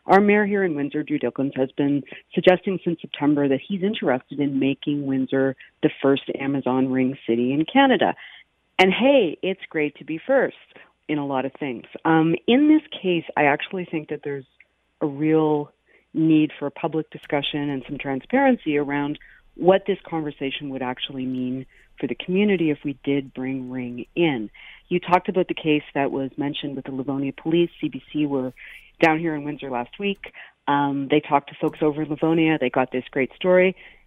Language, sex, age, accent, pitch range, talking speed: English, female, 50-69, American, 140-180 Hz, 185 wpm